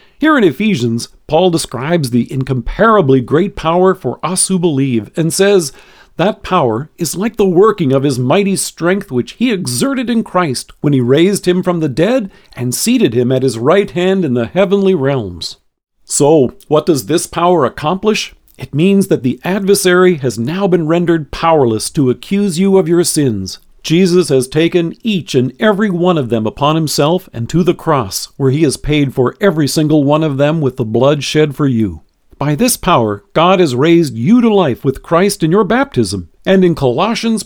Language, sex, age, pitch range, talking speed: English, male, 50-69, 130-185 Hz, 190 wpm